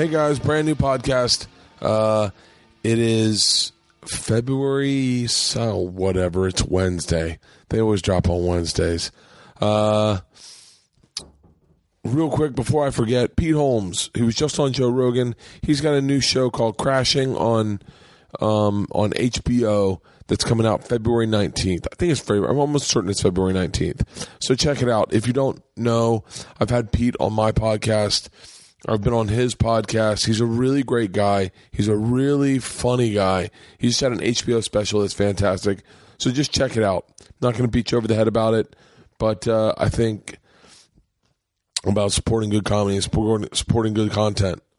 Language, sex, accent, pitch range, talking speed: English, male, American, 100-120 Hz, 160 wpm